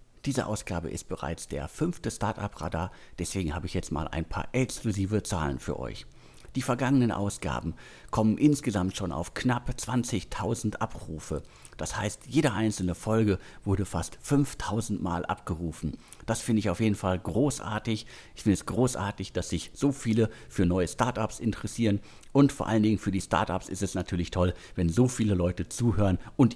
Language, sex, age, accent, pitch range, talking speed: German, male, 50-69, German, 90-120 Hz, 165 wpm